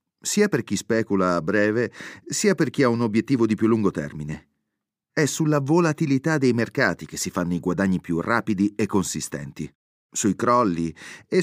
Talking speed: 175 wpm